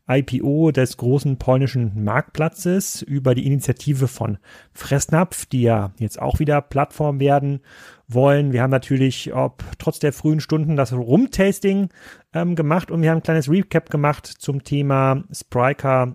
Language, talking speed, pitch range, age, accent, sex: German, 150 wpm, 125-155 Hz, 30-49, German, male